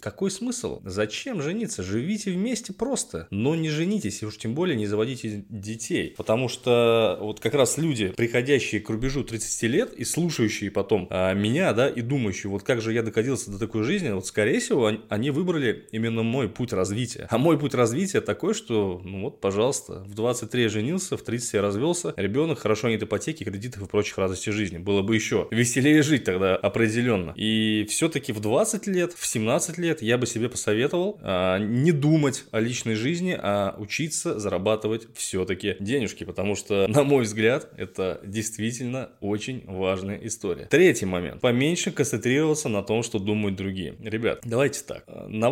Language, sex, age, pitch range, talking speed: Russian, male, 20-39, 105-140 Hz, 175 wpm